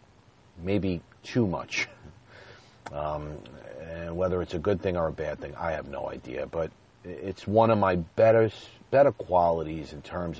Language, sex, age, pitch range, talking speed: English, male, 40-59, 85-100 Hz, 155 wpm